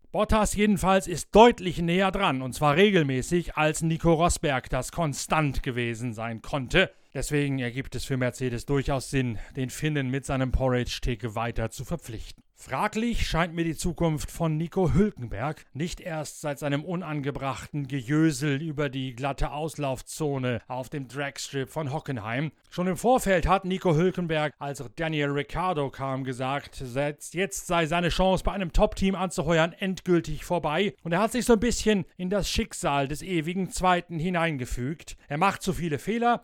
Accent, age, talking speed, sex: German, 40-59, 160 wpm, male